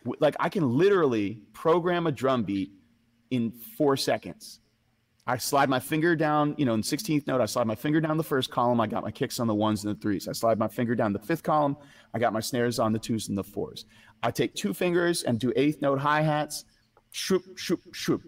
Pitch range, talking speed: 105-140 Hz, 225 wpm